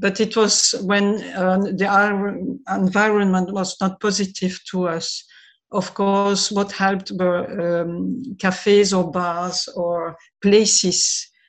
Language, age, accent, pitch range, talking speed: Dutch, 50-69, French, 175-200 Hz, 125 wpm